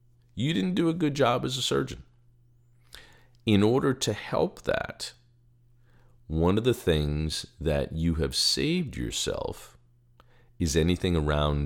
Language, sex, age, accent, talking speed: English, male, 50-69, American, 135 wpm